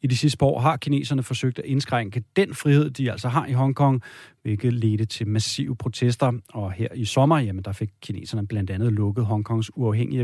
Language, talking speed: Danish, 205 wpm